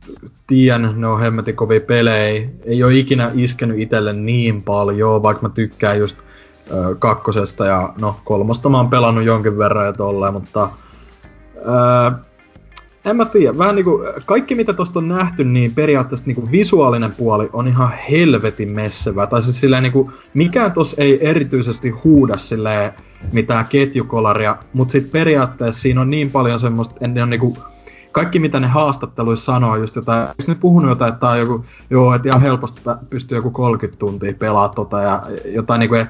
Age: 30-49